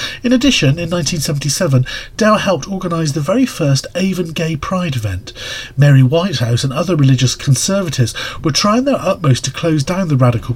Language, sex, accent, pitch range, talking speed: English, male, British, 125-175 Hz, 165 wpm